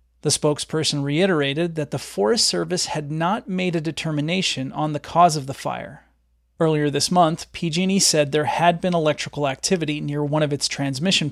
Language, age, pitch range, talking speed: English, 30-49, 140-170 Hz, 175 wpm